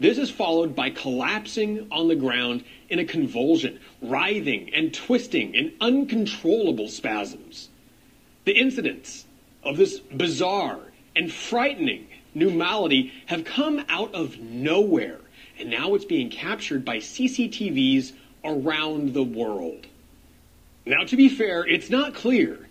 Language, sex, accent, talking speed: English, male, American, 125 wpm